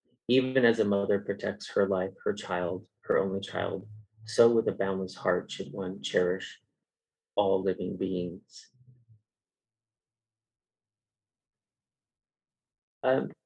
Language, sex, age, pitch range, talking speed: English, male, 30-49, 95-110 Hz, 105 wpm